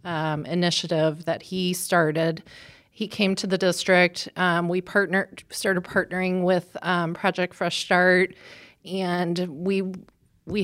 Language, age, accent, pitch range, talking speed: English, 30-49, American, 155-180 Hz, 130 wpm